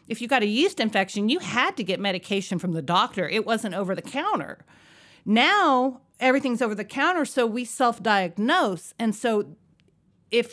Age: 40-59